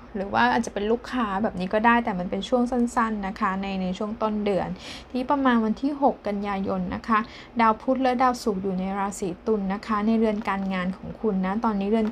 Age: 10-29